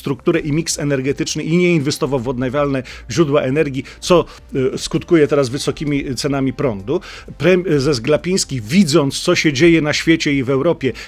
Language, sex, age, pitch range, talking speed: Polish, male, 40-59, 145-170 Hz, 150 wpm